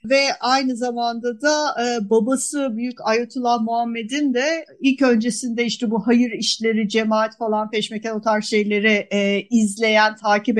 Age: 50-69